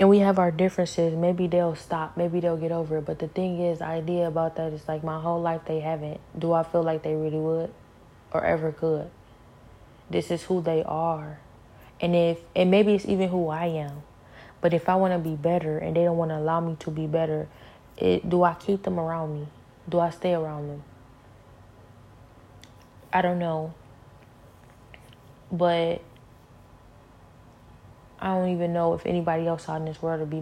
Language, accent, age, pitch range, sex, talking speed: English, American, 20-39, 145-175 Hz, female, 190 wpm